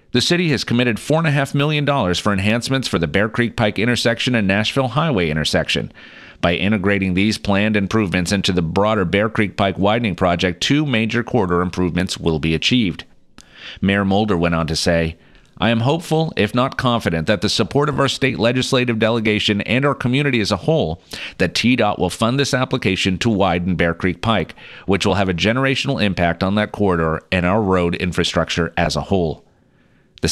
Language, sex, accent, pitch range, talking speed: English, male, American, 90-115 Hz, 180 wpm